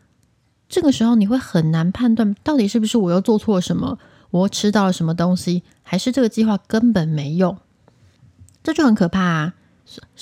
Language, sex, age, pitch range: Chinese, female, 20-39, 170-220 Hz